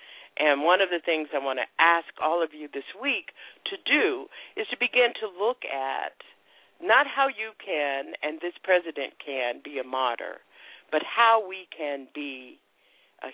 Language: English